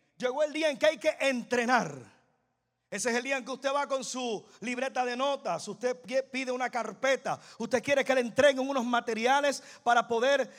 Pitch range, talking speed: 235-275 Hz, 195 wpm